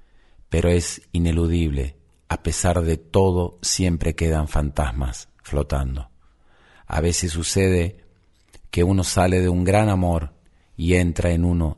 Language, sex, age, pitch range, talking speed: Spanish, male, 40-59, 75-90 Hz, 125 wpm